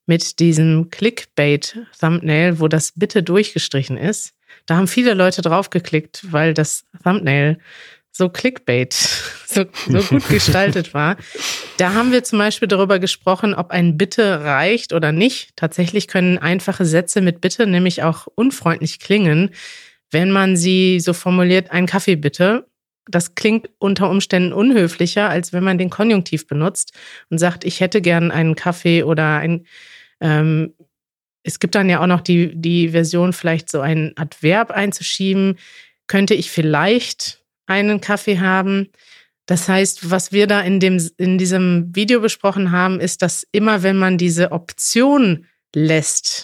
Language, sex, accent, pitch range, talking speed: German, female, German, 165-200 Hz, 150 wpm